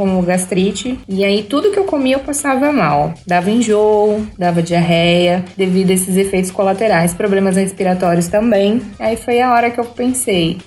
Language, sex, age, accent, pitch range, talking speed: Portuguese, female, 20-39, Brazilian, 185-250 Hz, 170 wpm